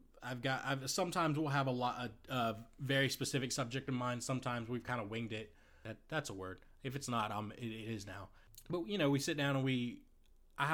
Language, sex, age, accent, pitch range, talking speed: English, male, 20-39, American, 105-125 Hz, 230 wpm